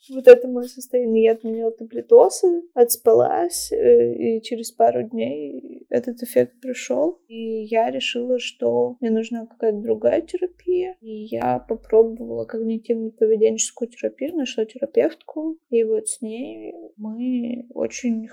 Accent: native